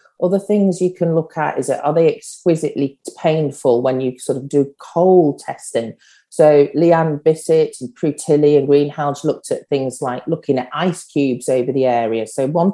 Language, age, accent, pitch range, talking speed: English, 40-59, British, 135-170 Hz, 185 wpm